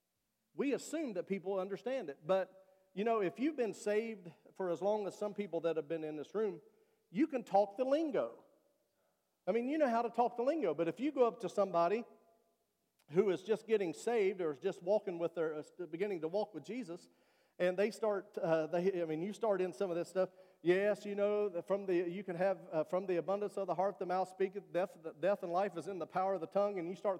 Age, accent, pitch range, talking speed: 40-59, American, 180-225 Hz, 245 wpm